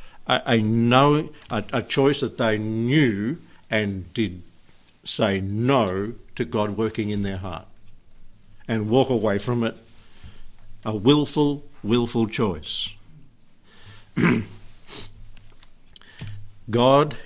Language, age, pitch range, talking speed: English, 60-79, 105-130 Hz, 100 wpm